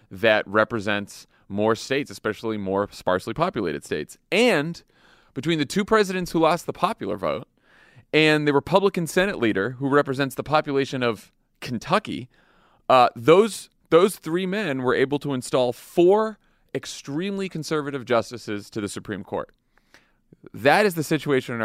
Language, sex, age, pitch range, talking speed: English, male, 30-49, 105-140 Hz, 145 wpm